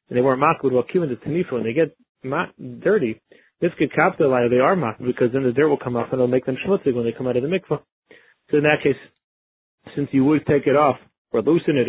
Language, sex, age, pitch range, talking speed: English, male, 30-49, 125-155 Hz, 250 wpm